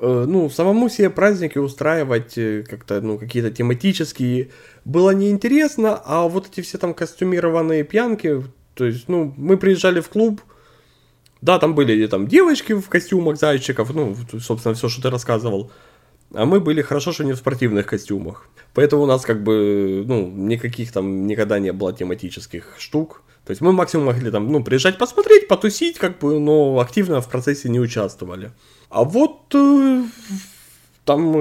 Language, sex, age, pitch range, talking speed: Russian, male, 20-39, 115-185 Hz, 155 wpm